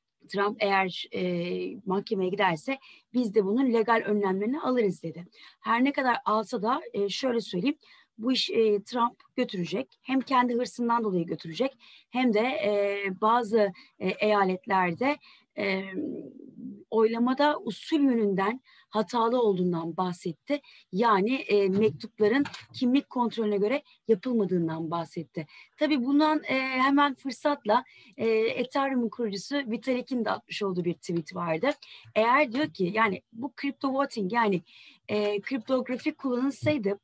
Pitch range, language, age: 195-250 Hz, Turkish, 30-49